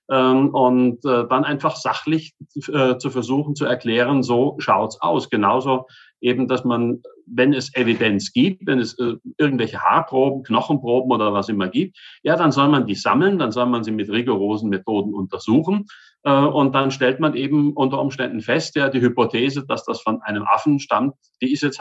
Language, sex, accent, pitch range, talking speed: German, male, German, 120-145 Hz, 175 wpm